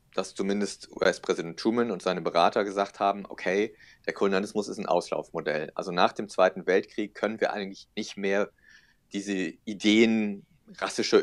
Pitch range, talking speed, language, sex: 100-110 Hz, 150 wpm, German, male